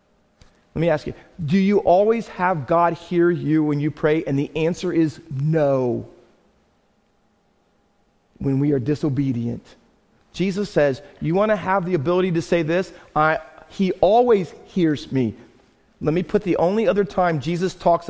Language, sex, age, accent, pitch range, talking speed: English, male, 40-59, American, 150-205 Hz, 160 wpm